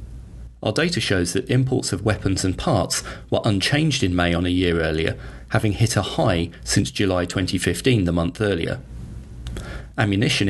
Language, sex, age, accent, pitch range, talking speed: English, male, 30-49, British, 90-110 Hz, 160 wpm